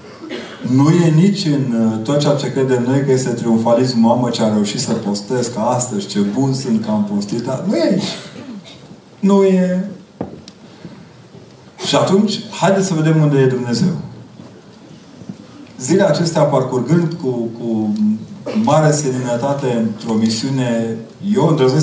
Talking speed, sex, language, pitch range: 130 wpm, male, Romanian, 115-150 Hz